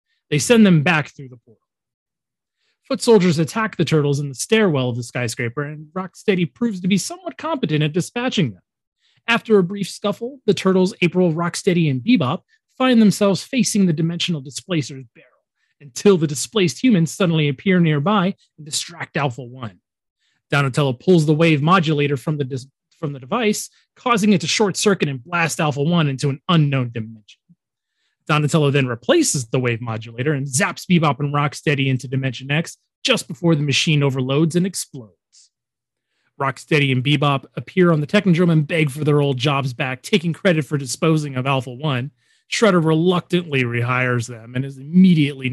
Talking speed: 165 wpm